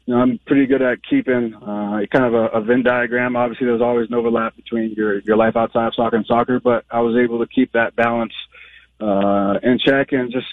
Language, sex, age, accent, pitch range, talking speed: English, male, 30-49, American, 110-125 Hz, 235 wpm